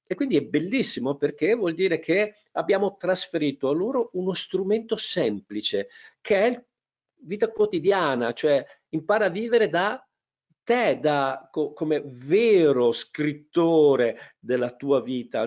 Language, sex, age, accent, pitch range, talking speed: Italian, male, 50-69, native, 115-195 Hz, 130 wpm